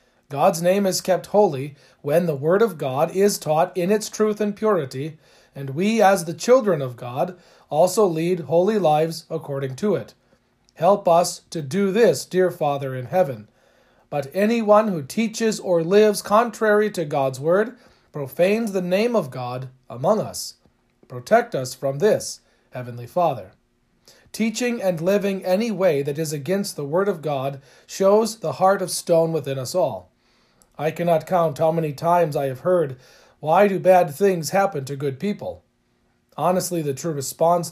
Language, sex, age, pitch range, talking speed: English, male, 40-59, 150-200 Hz, 165 wpm